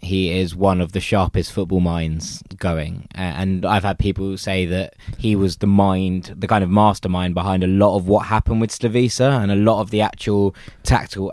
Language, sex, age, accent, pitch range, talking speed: English, male, 20-39, British, 95-115 Hz, 200 wpm